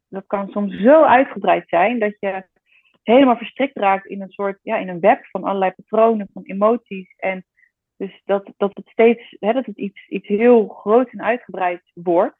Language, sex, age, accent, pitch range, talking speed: Dutch, female, 30-49, Dutch, 190-225 Hz, 190 wpm